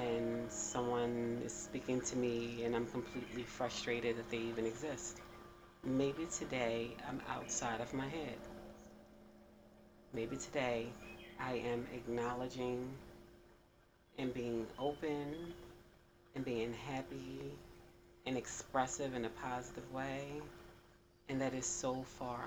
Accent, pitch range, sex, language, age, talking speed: American, 115-135 Hz, female, English, 30-49, 115 wpm